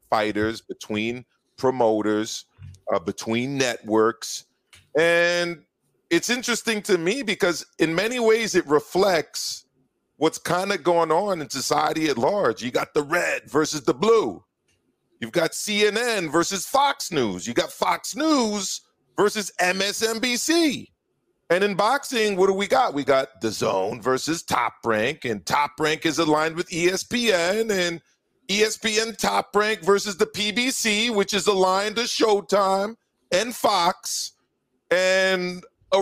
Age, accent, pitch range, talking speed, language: 40-59, American, 135-200 Hz, 135 wpm, English